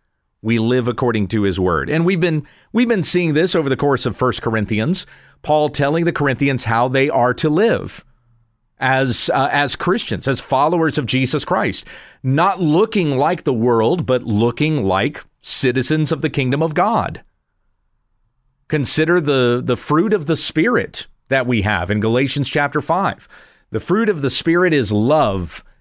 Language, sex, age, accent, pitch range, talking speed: English, male, 40-59, American, 115-150 Hz, 165 wpm